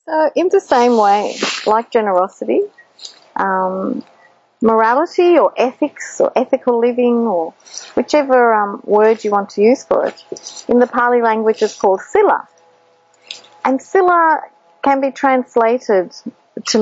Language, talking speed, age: English, 130 wpm, 40-59